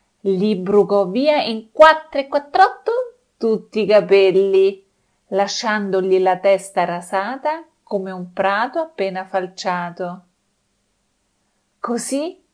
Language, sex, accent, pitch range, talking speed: Italian, female, native, 180-225 Hz, 95 wpm